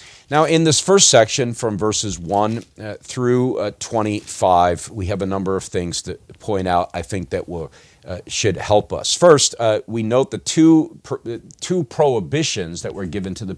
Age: 40-59